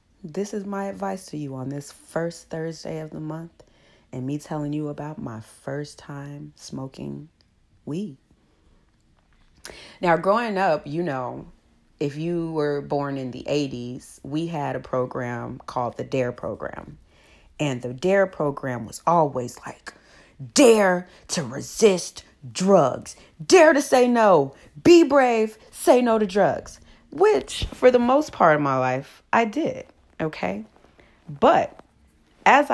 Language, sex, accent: English, female, American